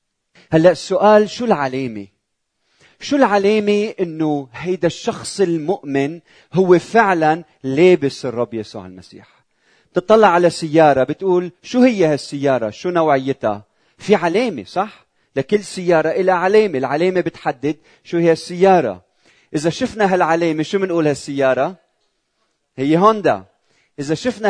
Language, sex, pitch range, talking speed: Arabic, male, 130-185 Hz, 115 wpm